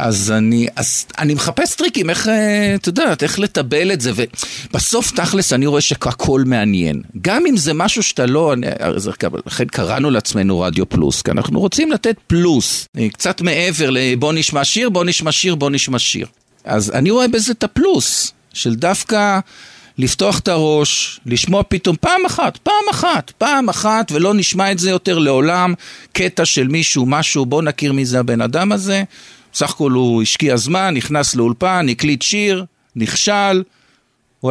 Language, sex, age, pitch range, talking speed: Hebrew, male, 50-69, 130-200 Hz, 160 wpm